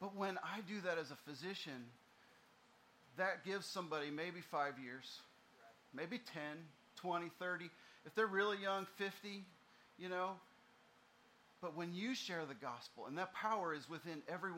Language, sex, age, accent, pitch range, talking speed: English, male, 40-59, American, 160-215 Hz, 150 wpm